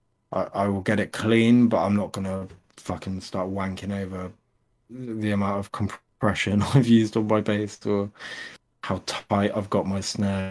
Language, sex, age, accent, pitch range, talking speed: English, male, 20-39, British, 95-110 Hz, 170 wpm